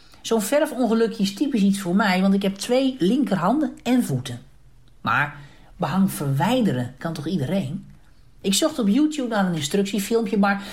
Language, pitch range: Dutch, 170-245 Hz